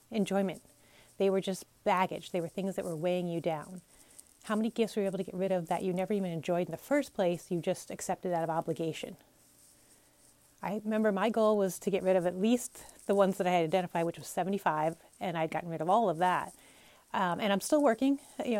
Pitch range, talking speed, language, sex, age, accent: 180-215 Hz, 230 wpm, English, female, 30-49, American